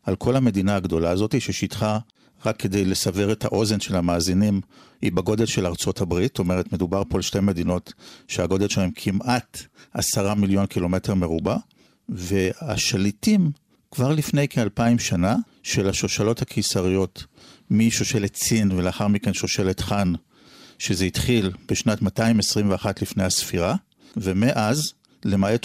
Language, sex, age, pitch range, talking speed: Hebrew, male, 50-69, 95-130 Hz, 125 wpm